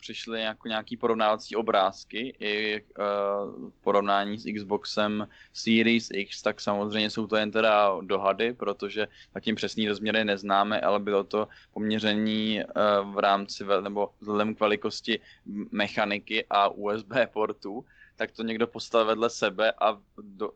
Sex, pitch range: male, 105-110 Hz